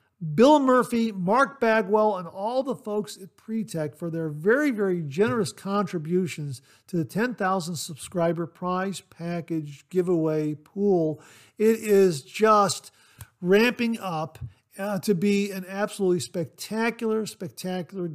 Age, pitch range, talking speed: 50-69, 155-205 Hz, 120 wpm